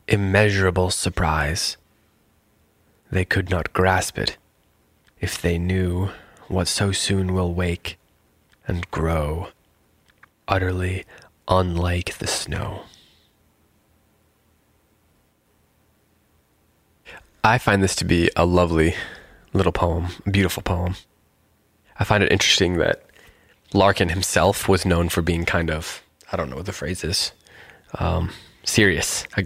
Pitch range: 85-100 Hz